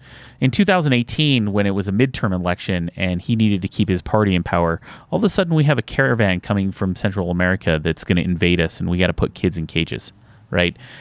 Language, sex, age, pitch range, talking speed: English, male, 30-49, 95-120 Hz, 235 wpm